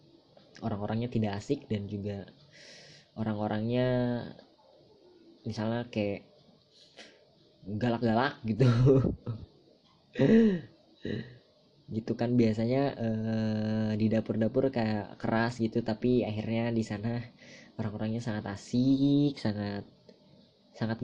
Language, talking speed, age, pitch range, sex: Indonesian, 80 wpm, 20-39, 105-125 Hz, female